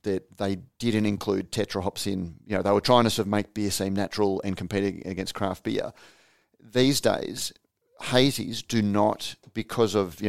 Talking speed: 180 wpm